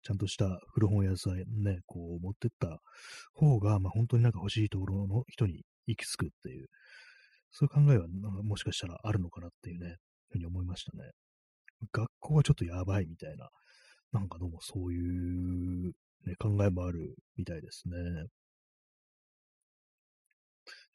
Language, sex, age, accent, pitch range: Japanese, male, 30-49, native, 90-115 Hz